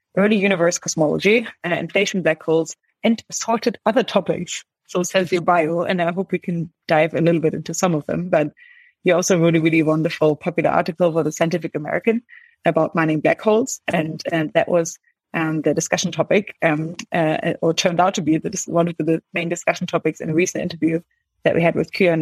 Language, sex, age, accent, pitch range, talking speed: English, female, 30-49, German, 160-195 Hz, 215 wpm